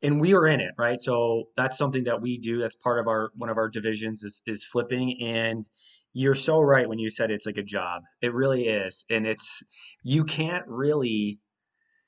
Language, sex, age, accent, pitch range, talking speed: English, male, 20-39, American, 115-140 Hz, 215 wpm